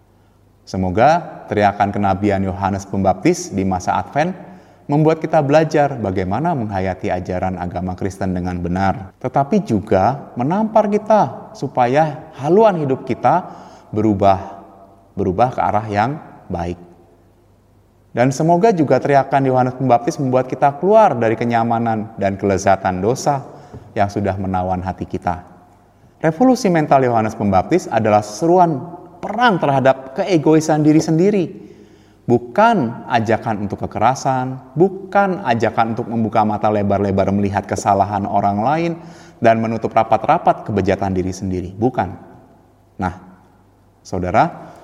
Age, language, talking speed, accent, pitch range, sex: 30-49, Indonesian, 115 wpm, native, 95-140 Hz, male